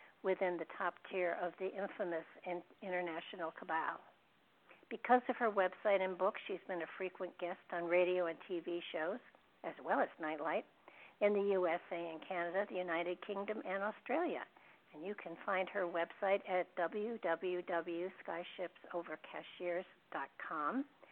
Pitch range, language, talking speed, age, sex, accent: 180-200 Hz, English, 135 wpm, 60-79, female, American